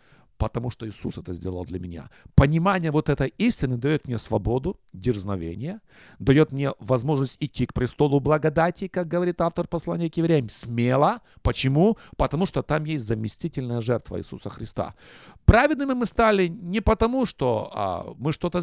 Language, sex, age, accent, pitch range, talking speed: Russian, male, 50-69, native, 115-175 Hz, 150 wpm